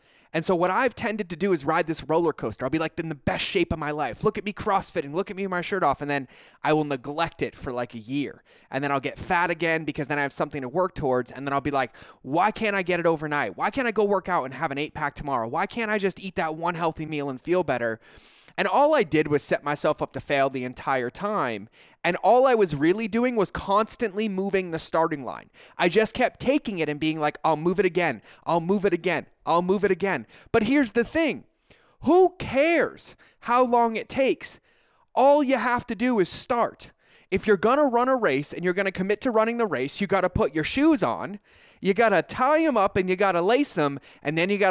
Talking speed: 260 wpm